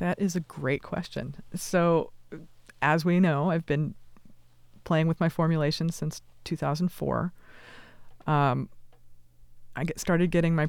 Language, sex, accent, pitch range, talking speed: English, female, American, 130-165 Hz, 140 wpm